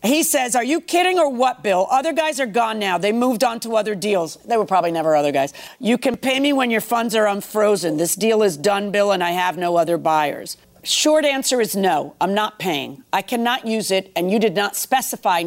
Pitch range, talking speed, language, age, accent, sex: 175-230 Hz, 235 wpm, English, 50-69, American, female